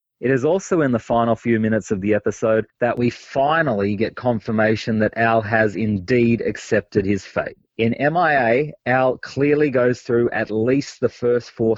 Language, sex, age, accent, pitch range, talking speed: English, male, 30-49, Australian, 105-125 Hz, 175 wpm